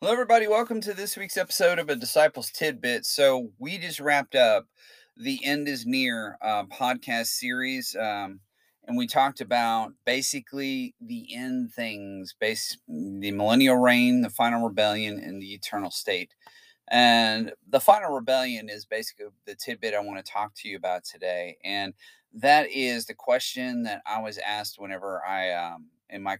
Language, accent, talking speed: English, American, 165 wpm